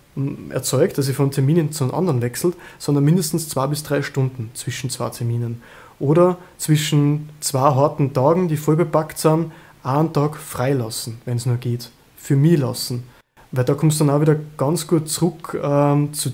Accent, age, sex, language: German, 20-39, male, German